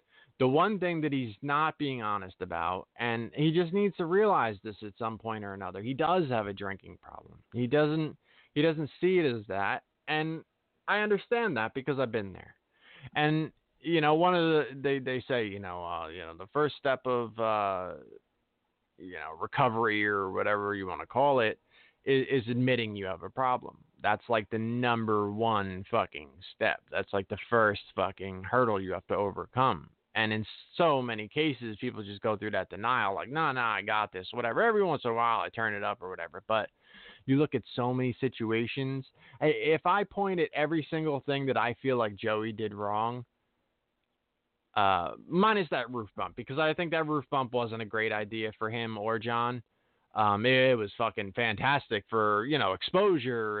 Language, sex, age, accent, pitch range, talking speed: English, male, 20-39, American, 105-145 Hz, 195 wpm